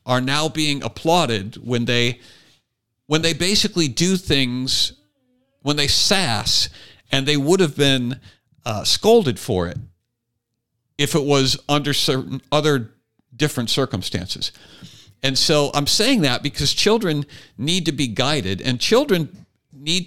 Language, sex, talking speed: English, male, 135 wpm